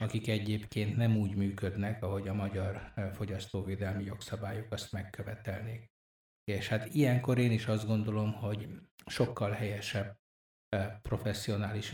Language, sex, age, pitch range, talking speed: Hungarian, male, 60-79, 100-115 Hz, 115 wpm